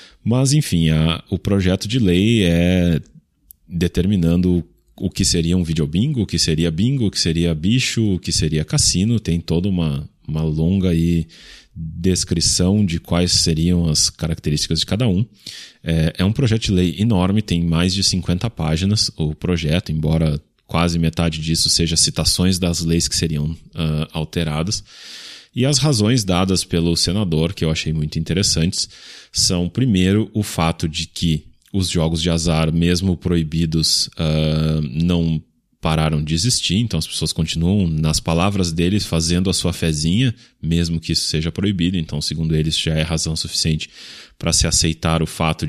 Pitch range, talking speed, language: 80-95 Hz, 160 wpm, Portuguese